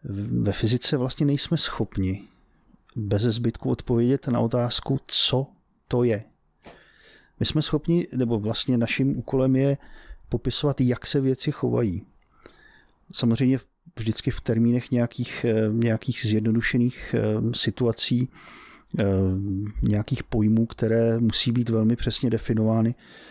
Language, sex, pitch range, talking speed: Czech, male, 110-125 Hz, 110 wpm